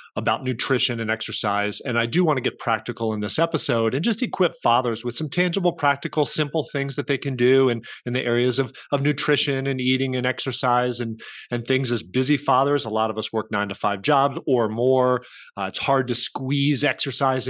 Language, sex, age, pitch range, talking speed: English, male, 30-49, 115-145 Hz, 215 wpm